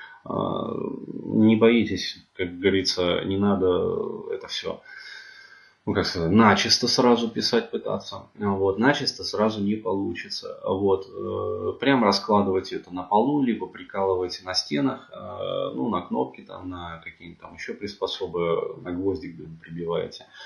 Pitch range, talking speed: 95-145 Hz, 125 wpm